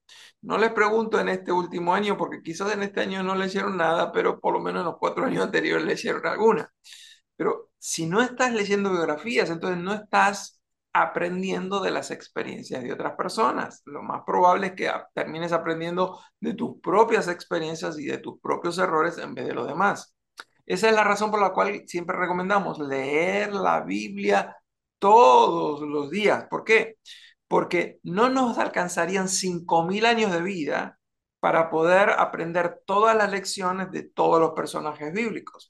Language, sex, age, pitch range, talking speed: Spanish, male, 50-69, 170-215 Hz, 170 wpm